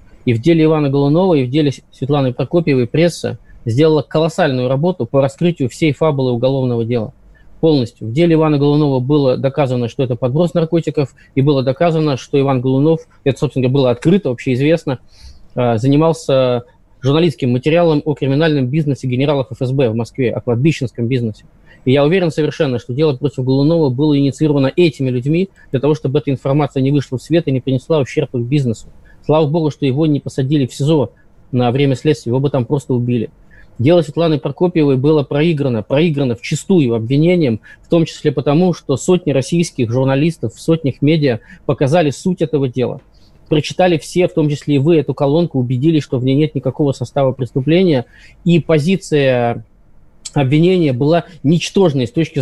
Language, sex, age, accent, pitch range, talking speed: Russian, male, 20-39, native, 130-160 Hz, 165 wpm